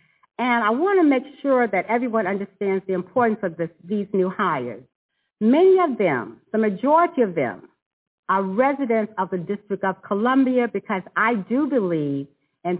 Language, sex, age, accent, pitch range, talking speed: English, female, 50-69, American, 185-245 Hz, 165 wpm